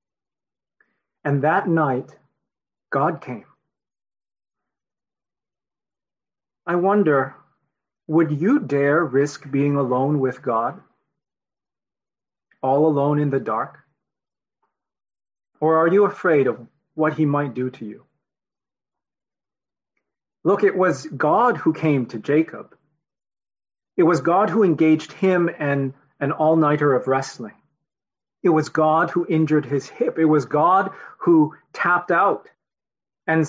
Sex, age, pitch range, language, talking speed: male, 40-59, 140-165 Hz, English, 115 wpm